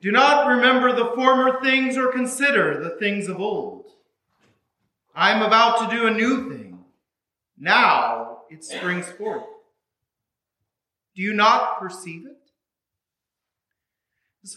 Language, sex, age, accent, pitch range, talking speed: English, male, 40-59, American, 185-260 Hz, 120 wpm